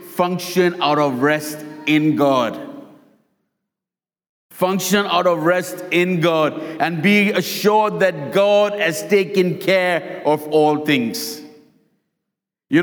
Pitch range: 165-195 Hz